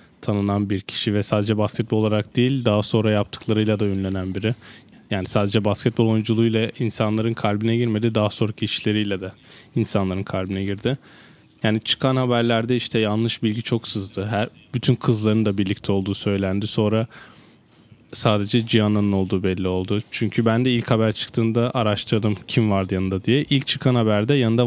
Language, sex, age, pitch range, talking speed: Turkish, male, 10-29, 105-120 Hz, 155 wpm